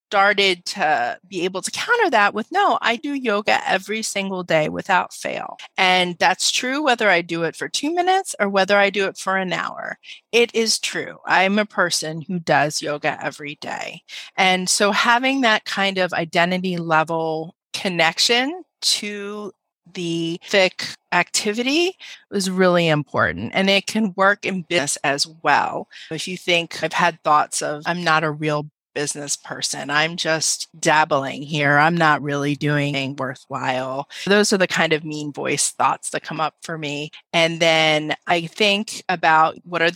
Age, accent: 30-49, American